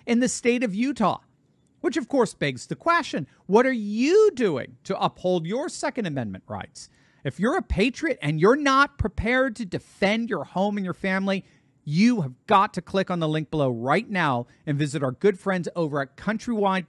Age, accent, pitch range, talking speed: 50-69, American, 150-230 Hz, 195 wpm